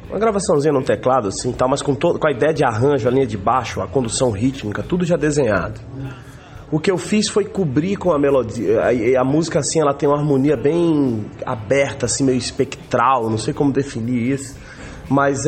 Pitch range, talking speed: 120-165 Hz, 205 wpm